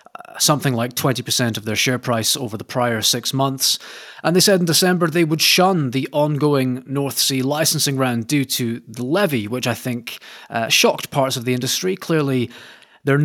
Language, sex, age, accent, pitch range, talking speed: English, male, 30-49, British, 120-145 Hz, 185 wpm